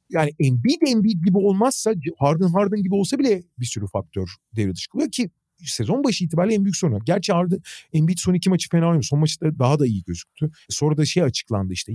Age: 40-59